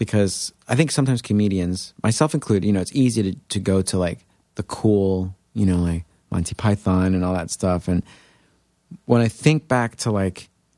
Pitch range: 95-120 Hz